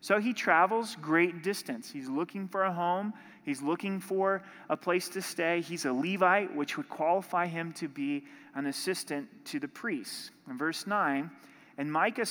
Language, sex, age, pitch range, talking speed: English, male, 30-49, 145-210 Hz, 175 wpm